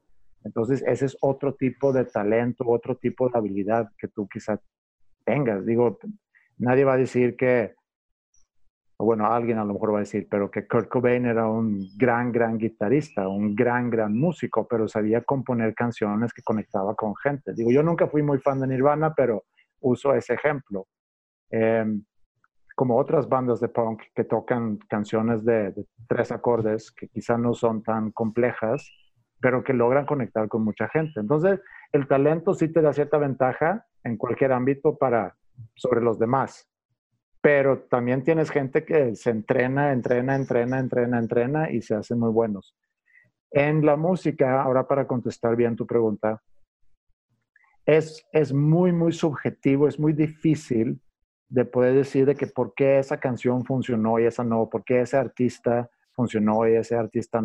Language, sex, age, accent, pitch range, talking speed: Spanish, male, 50-69, Mexican, 115-135 Hz, 165 wpm